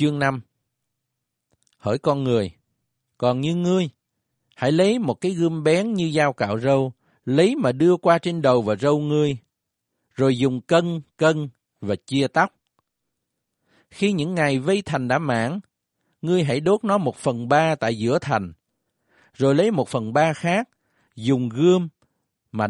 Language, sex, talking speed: Vietnamese, male, 160 wpm